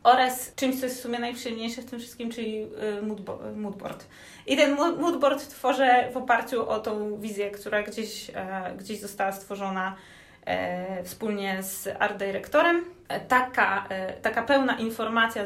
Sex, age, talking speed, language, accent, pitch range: female, 20-39, 130 wpm, Polish, native, 200-250 Hz